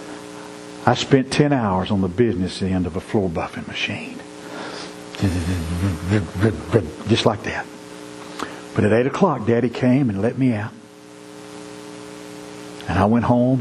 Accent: American